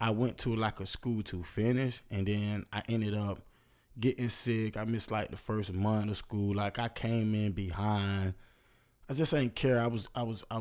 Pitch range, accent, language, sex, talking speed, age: 100-115 Hz, American, English, male, 210 wpm, 20-39